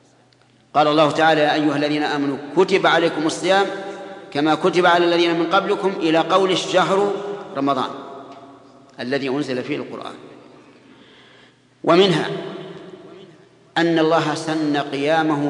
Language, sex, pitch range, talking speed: Arabic, male, 140-175 Hz, 110 wpm